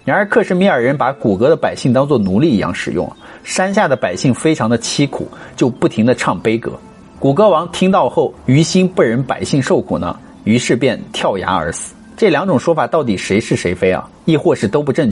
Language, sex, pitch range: Chinese, male, 125-185 Hz